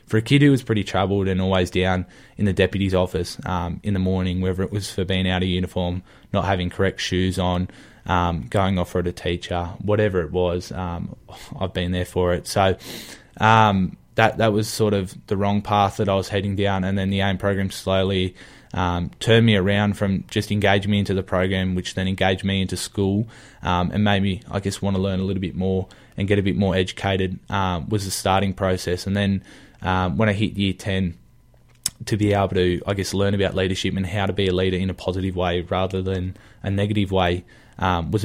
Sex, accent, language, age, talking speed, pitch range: male, Australian, English, 20-39, 225 wpm, 90-100 Hz